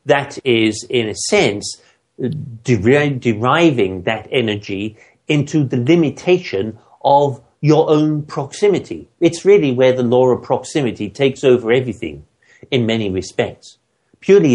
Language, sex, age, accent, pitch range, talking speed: English, male, 50-69, British, 125-160 Hz, 120 wpm